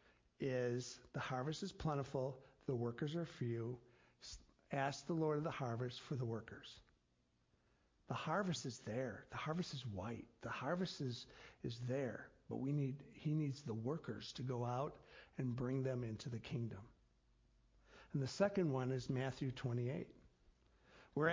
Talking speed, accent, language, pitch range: 155 wpm, American, English, 120-150 Hz